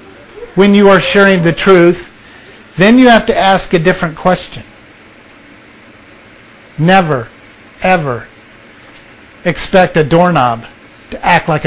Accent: American